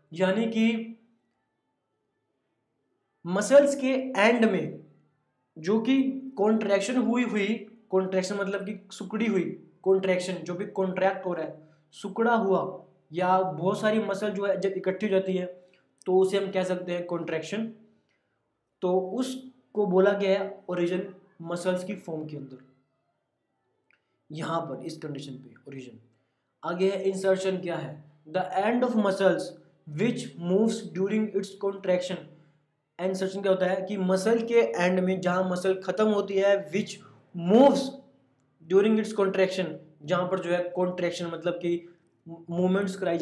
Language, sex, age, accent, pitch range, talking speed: Hindi, male, 20-39, native, 170-200 Hz, 120 wpm